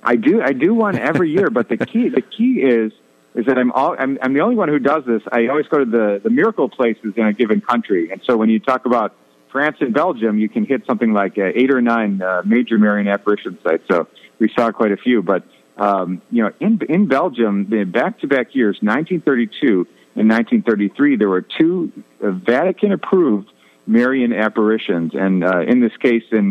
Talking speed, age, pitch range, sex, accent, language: 205 wpm, 50-69, 100-125 Hz, male, American, English